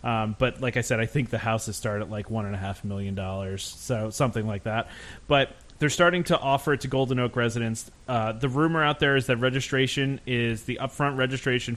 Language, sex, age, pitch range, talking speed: English, male, 30-49, 115-135 Hz, 225 wpm